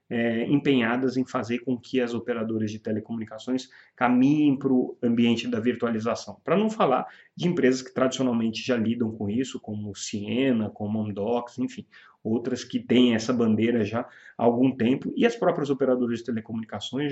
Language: Portuguese